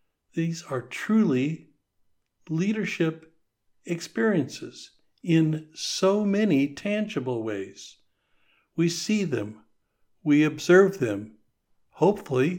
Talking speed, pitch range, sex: 80 wpm, 130-175 Hz, male